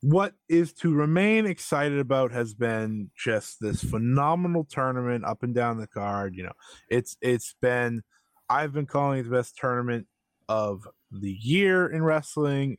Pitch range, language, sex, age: 105-145 Hz, English, male, 20-39